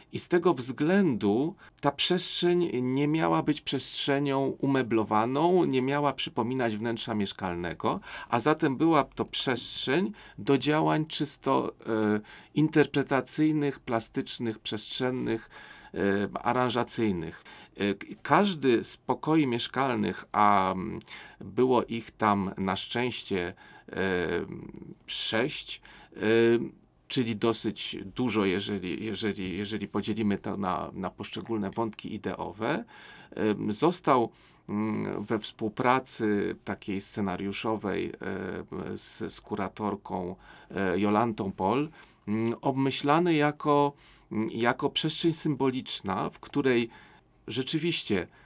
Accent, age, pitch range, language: native, 40-59, 105-140 Hz, Polish